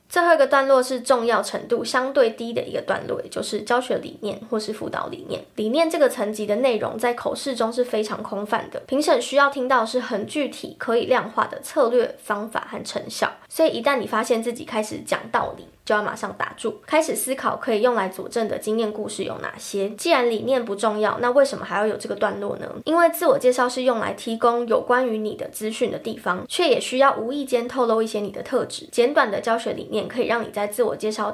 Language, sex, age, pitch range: Chinese, female, 10-29, 215-270 Hz